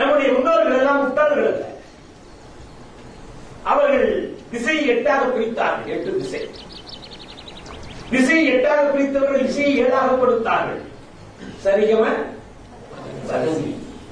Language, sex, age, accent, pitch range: Tamil, male, 40-59, native, 230-280 Hz